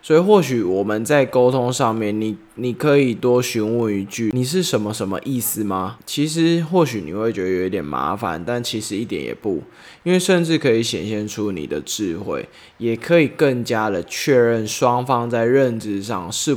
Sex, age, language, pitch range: male, 20-39, Chinese, 105-130 Hz